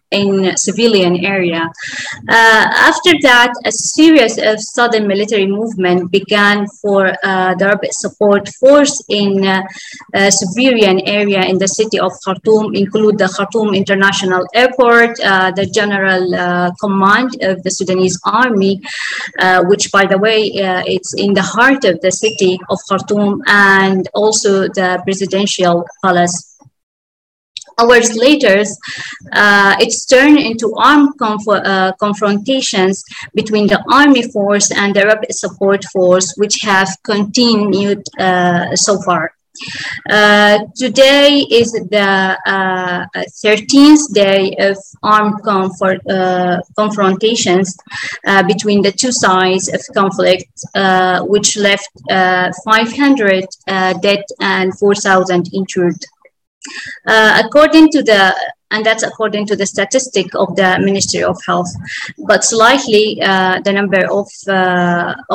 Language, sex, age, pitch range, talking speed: English, female, 20-39, 190-220 Hz, 125 wpm